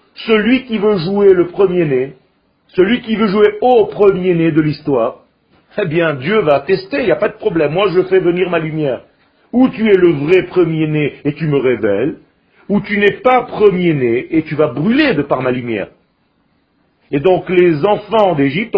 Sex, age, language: male, 50-69, French